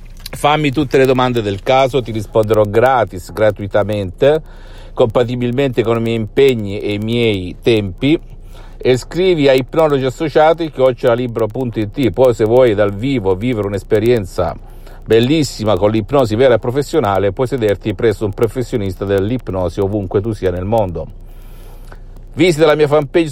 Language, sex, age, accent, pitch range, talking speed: Italian, male, 50-69, native, 105-130 Hz, 140 wpm